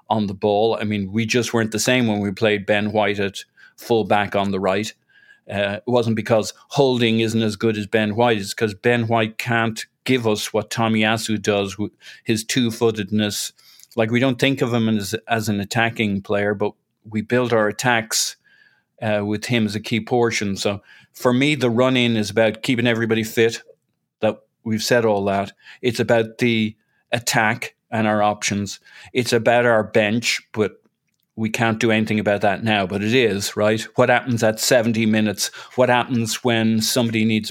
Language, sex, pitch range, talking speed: English, male, 105-120 Hz, 185 wpm